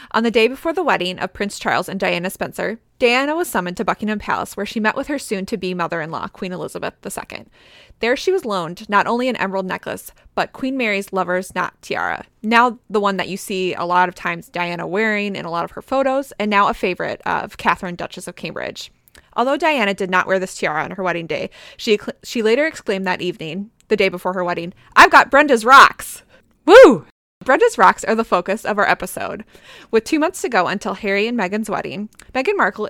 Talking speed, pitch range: 215 wpm, 185-240 Hz